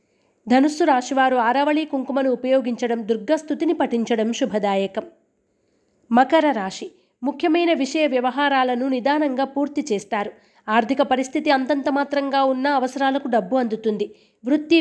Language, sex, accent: Telugu, female, native